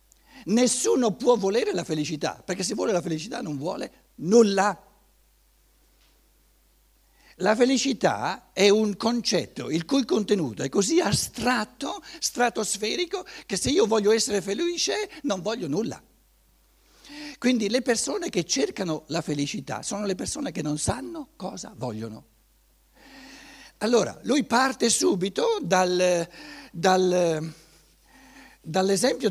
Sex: male